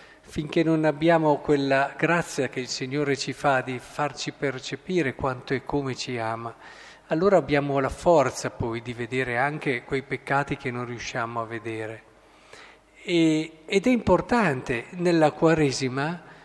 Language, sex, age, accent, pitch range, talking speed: Italian, male, 50-69, native, 140-180 Hz, 140 wpm